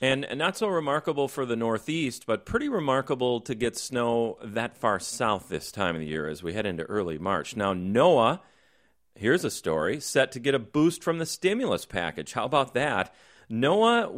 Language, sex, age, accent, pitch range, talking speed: English, male, 40-59, American, 105-145 Hz, 190 wpm